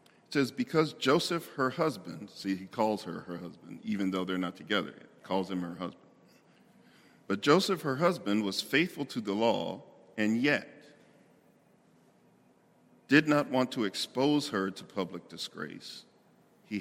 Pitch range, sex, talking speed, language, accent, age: 105-150 Hz, male, 155 wpm, English, American, 50-69